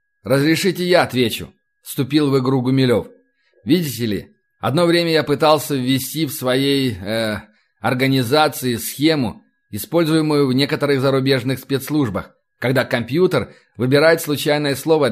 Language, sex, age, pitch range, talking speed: Russian, male, 30-49, 125-155 Hz, 115 wpm